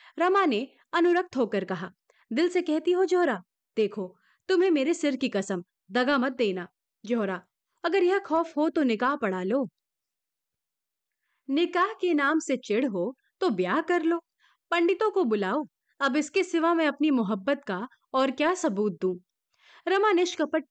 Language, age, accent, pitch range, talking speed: Hindi, 30-49, native, 225-340 Hz, 155 wpm